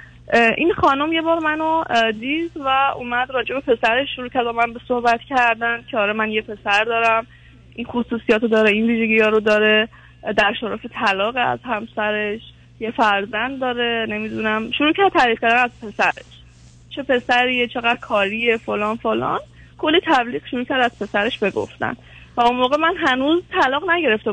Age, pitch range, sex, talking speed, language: 20-39, 215-265 Hz, female, 165 wpm, Persian